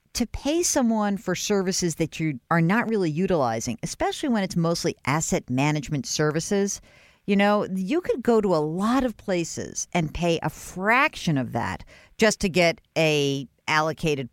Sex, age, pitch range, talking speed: female, 50-69, 150-220 Hz, 165 wpm